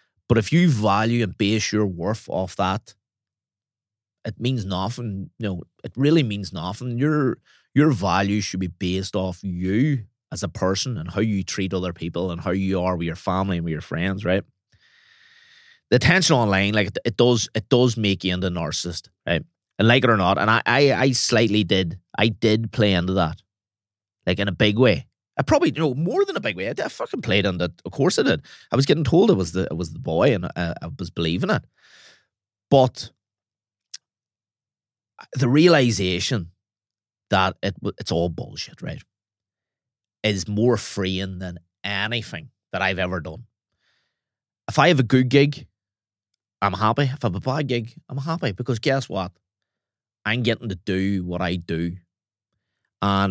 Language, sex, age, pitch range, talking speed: English, male, 30-49, 95-120 Hz, 185 wpm